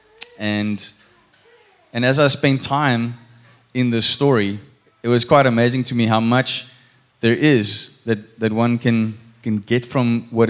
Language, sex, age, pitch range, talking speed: English, male, 20-39, 110-125 Hz, 155 wpm